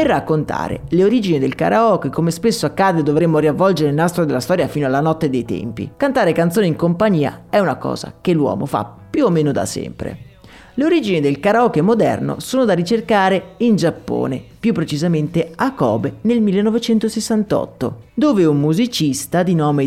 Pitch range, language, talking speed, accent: 150-215 Hz, Italian, 170 wpm, native